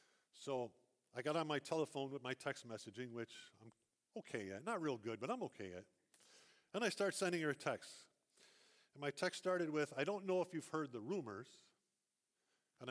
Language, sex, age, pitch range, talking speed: English, male, 50-69, 120-185 Hz, 195 wpm